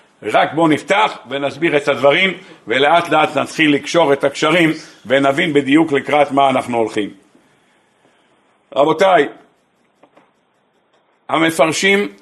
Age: 50-69